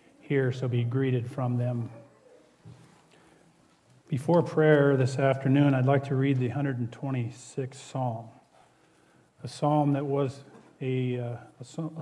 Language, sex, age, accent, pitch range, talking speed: English, male, 40-59, American, 130-155 Hz, 115 wpm